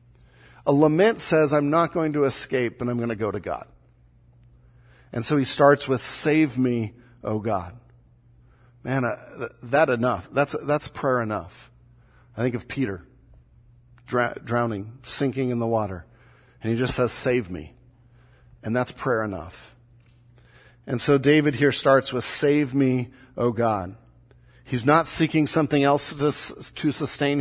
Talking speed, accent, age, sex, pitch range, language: 155 wpm, American, 40-59, male, 120-175 Hz, English